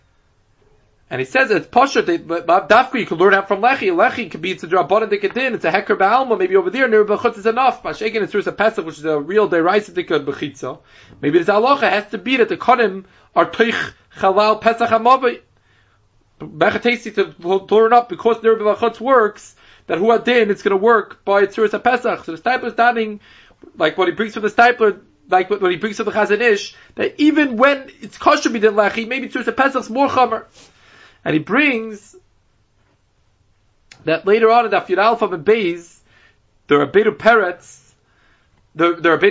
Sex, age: male, 30-49